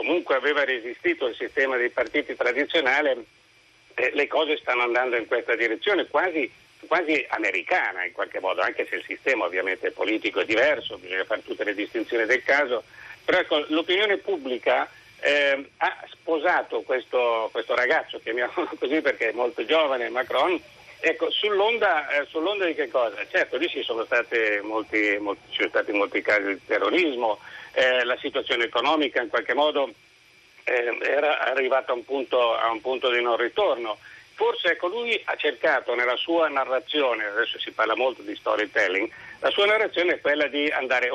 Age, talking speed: 60-79, 160 wpm